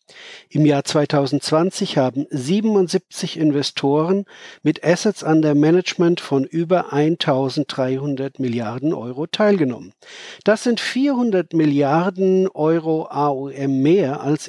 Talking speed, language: 105 wpm, German